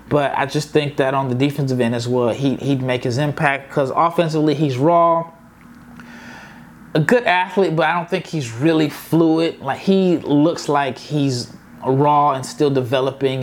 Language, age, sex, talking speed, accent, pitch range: English, 20-39, male, 175 wpm, American, 140-170 Hz